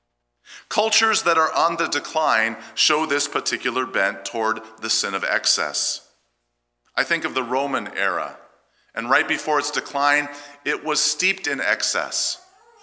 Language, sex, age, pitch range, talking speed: English, male, 50-69, 105-175 Hz, 145 wpm